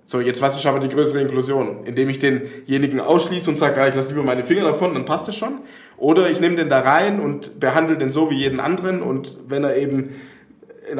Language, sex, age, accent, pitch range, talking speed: German, male, 20-39, German, 120-145 Hz, 225 wpm